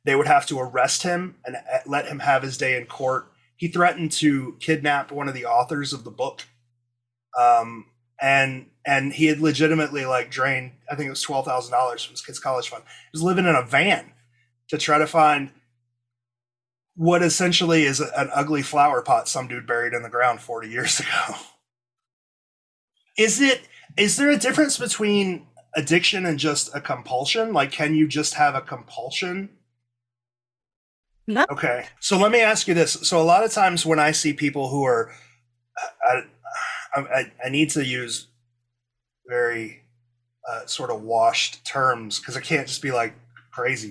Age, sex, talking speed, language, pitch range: 30-49, male, 175 wpm, English, 120-160 Hz